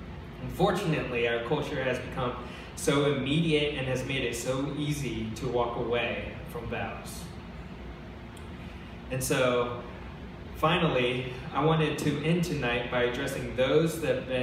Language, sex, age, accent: English, male, 20-39, American